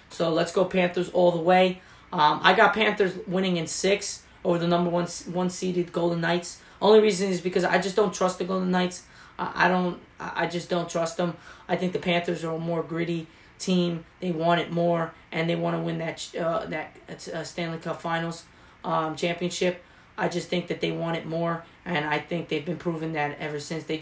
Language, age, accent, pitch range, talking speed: English, 20-39, American, 160-180 Hz, 210 wpm